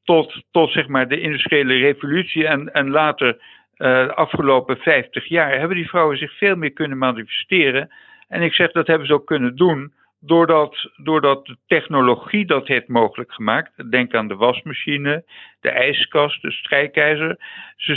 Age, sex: 50-69, male